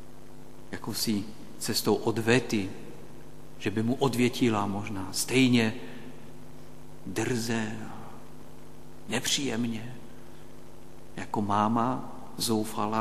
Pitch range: 85-120 Hz